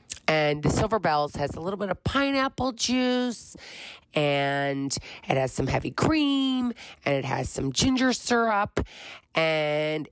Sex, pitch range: female, 140-195 Hz